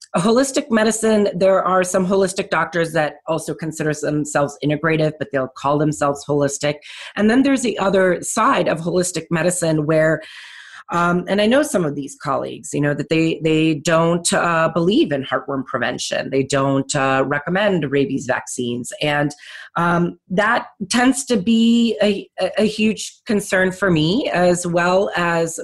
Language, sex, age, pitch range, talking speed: English, female, 30-49, 155-205 Hz, 155 wpm